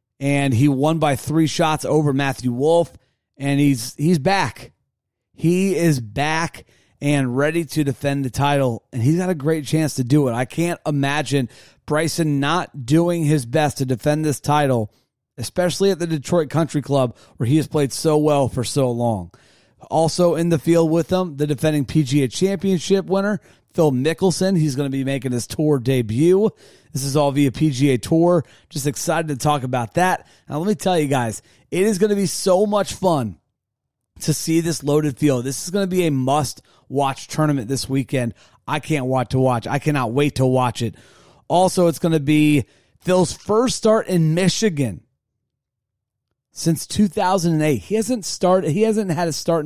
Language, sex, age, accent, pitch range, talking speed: English, male, 30-49, American, 130-170 Hz, 180 wpm